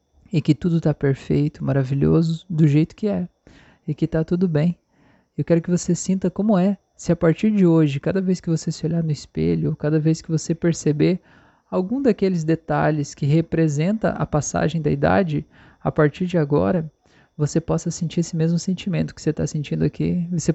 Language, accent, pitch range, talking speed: Portuguese, Brazilian, 150-175 Hz, 190 wpm